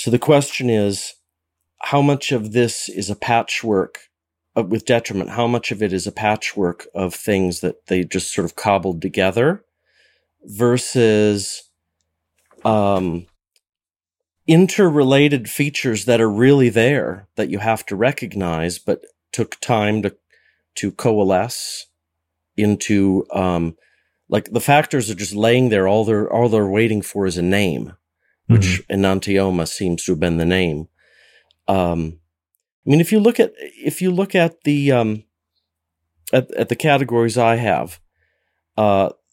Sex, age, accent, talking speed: male, 40-59, American, 145 wpm